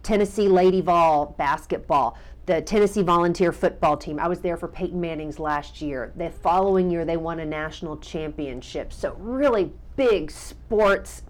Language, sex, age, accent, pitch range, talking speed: English, female, 40-59, American, 165-220 Hz, 155 wpm